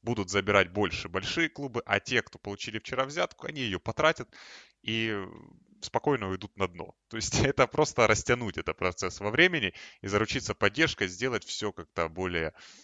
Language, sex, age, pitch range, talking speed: Russian, male, 20-39, 90-120 Hz, 165 wpm